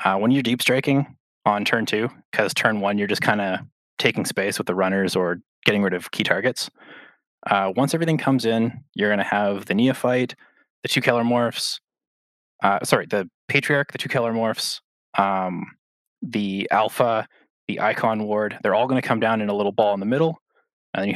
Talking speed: 195 wpm